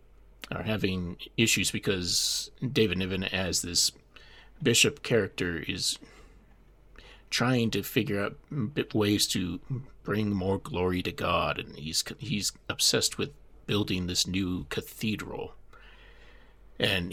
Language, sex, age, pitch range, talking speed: English, male, 30-49, 90-120 Hz, 110 wpm